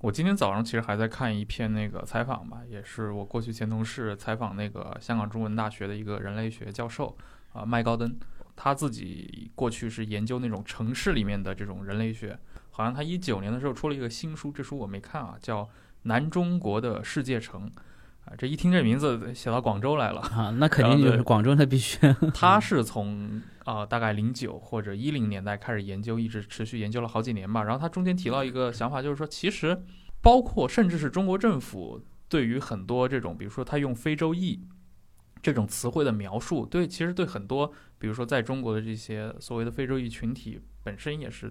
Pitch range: 110-140 Hz